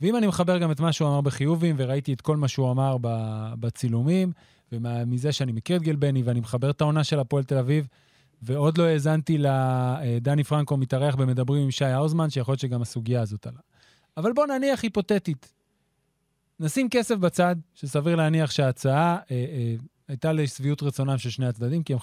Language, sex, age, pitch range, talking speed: Hebrew, male, 20-39, 130-170 Hz, 180 wpm